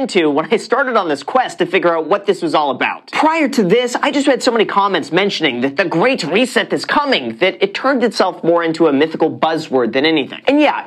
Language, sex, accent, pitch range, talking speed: English, male, American, 160-240 Hz, 245 wpm